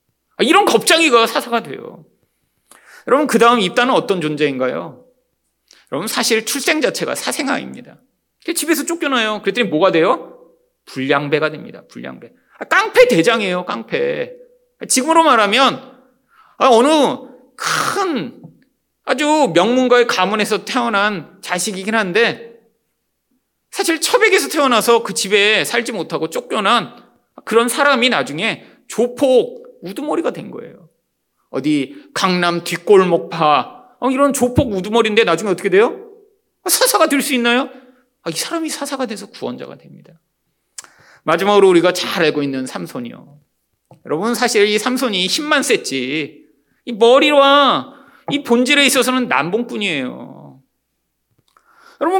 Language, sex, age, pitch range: Korean, male, 30-49, 205-300 Hz